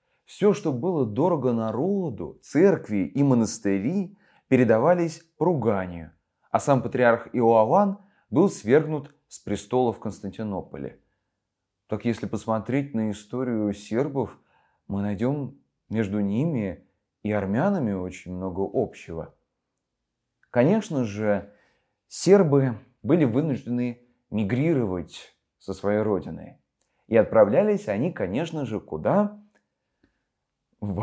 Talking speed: 100 wpm